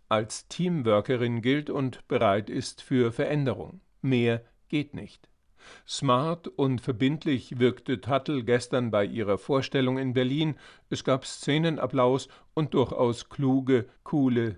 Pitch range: 120-140 Hz